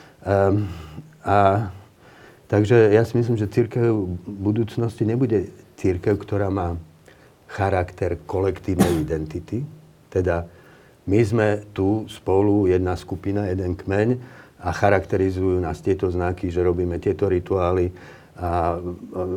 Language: Slovak